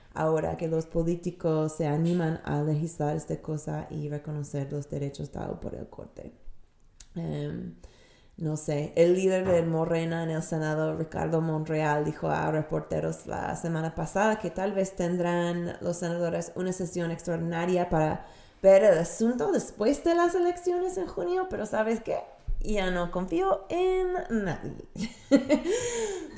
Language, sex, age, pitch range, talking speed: Spanish, female, 20-39, 155-195 Hz, 145 wpm